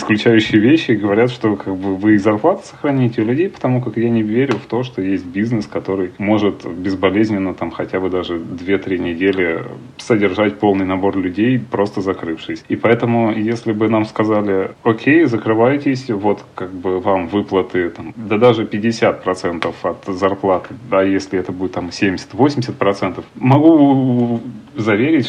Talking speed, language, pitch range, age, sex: 155 wpm, Russian, 95-115 Hz, 30-49, male